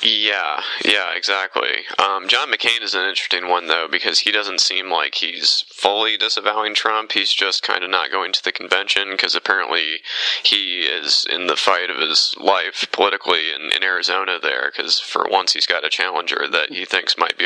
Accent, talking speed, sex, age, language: American, 195 wpm, male, 20-39, English